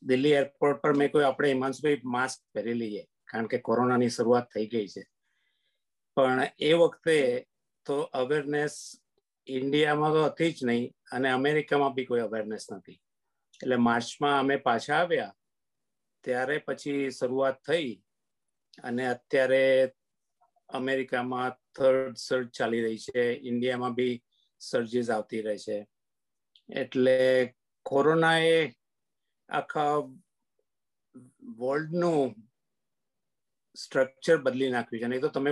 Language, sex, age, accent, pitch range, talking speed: English, male, 50-69, Indian, 125-155 Hz, 95 wpm